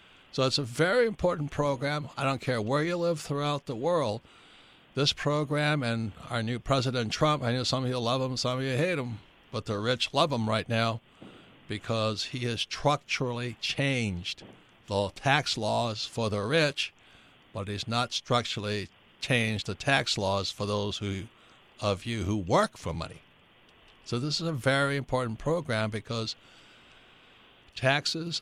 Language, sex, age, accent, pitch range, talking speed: English, male, 60-79, American, 110-145 Hz, 165 wpm